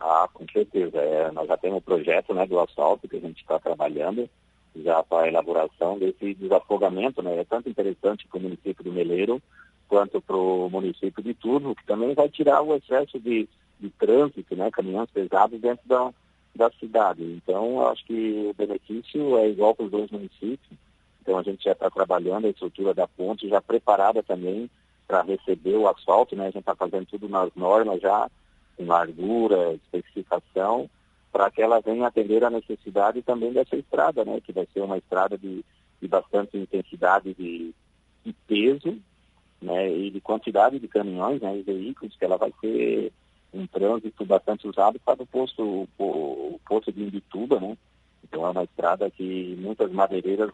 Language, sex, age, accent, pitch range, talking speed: Portuguese, male, 50-69, Brazilian, 95-120 Hz, 175 wpm